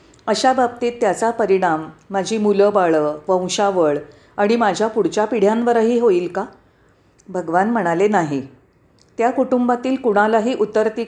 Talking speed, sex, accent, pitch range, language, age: 115 wpm, female, native, 185-235 Hz, Marathi, 40-59